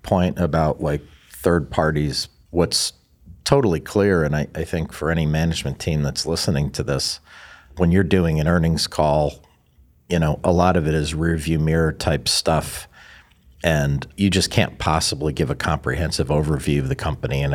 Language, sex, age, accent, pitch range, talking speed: English, male, 50-69, American, 70-90 Hz, 175 wpm